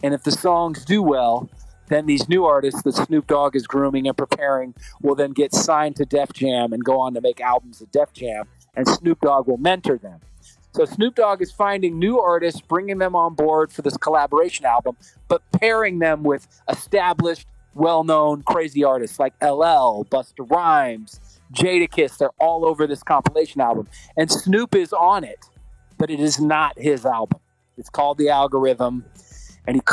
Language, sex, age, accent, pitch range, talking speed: English, male, 40-59, American, 135-175 Hz, 180 wpm